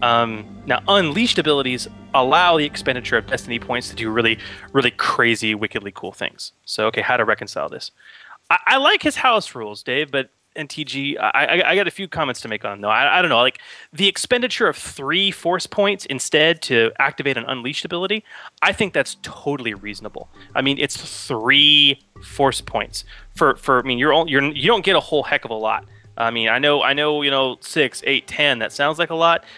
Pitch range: 110-150 Hz